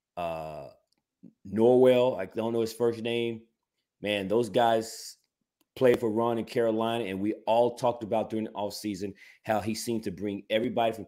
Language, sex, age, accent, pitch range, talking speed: English, male, 30-49, American, 100-120 Hz, 170 wpm